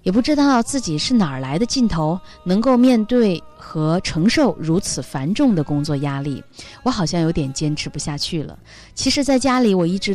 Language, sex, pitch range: Chinese, female, 155-215 Hz